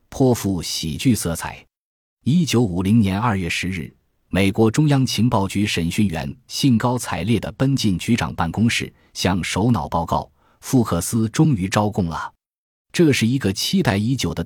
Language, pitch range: Chinese, 85-120 Hz